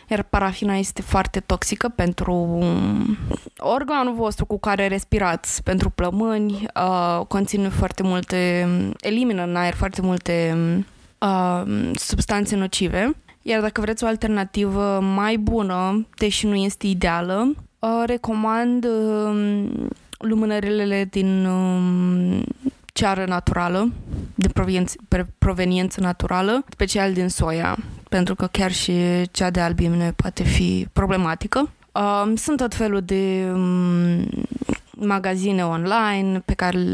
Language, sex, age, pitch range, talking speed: Romanian, female, 20-39, 180-215 Hz, 115 wpm